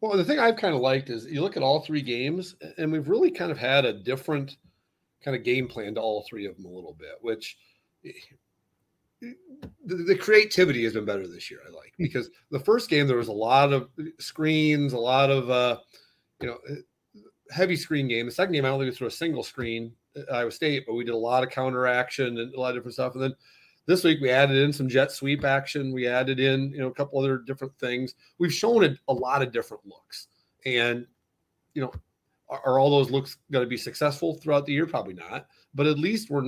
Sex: male